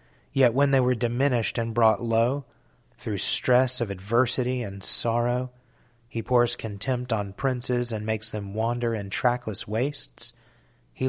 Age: 30-49